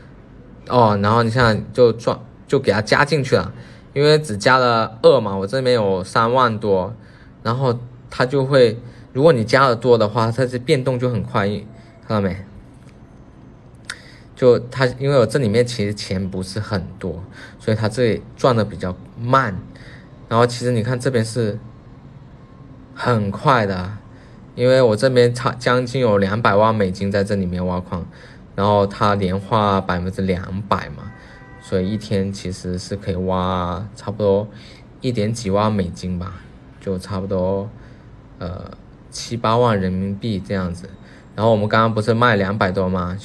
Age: 20-39